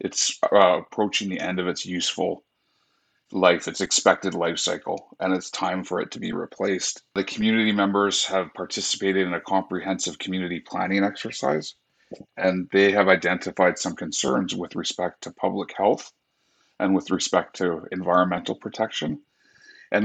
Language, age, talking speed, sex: English, 30-49, 150 wpm, male